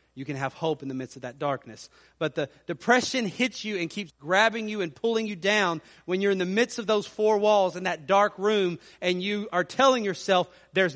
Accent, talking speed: American, 230 wpm